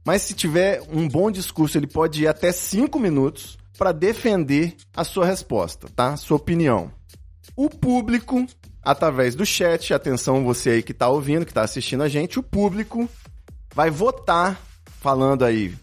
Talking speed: 160 wpm